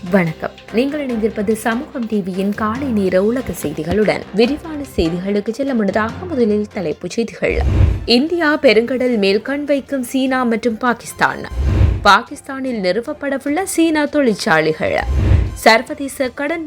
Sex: female